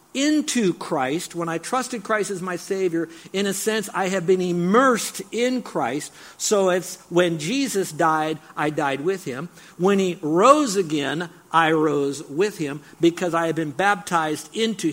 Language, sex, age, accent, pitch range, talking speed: English, male, 50-69, American, 150-190 Hz, 165 wpm